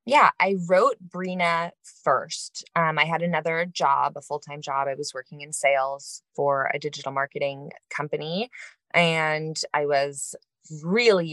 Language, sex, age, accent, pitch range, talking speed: English, female, 20-39, American, 140-175 Hz, 145 wpm